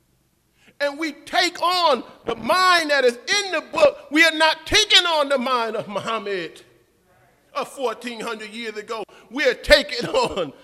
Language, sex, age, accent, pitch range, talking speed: English, male, 40-59, American, 175-280 Hz, 170 wpm